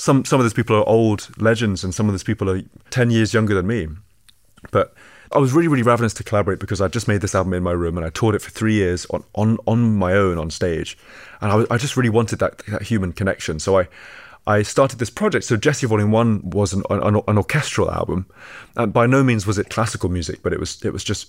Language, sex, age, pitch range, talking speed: English, male, 30-49, 95-115 Hz, 255 wpm